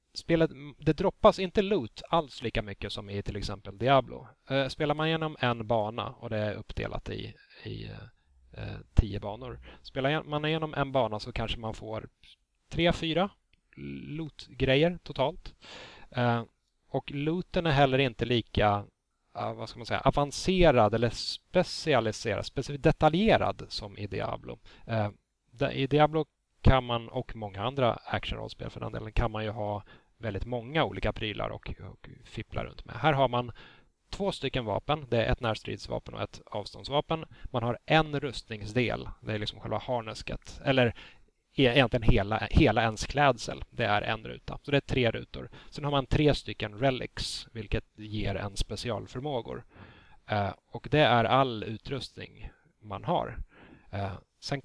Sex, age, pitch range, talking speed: male, 30-49, 105-145 Hz, 155 wpm